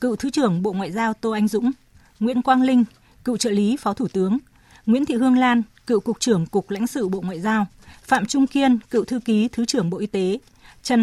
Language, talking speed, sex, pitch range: Vietnamese, 235 wpm, female, 195-240 Hz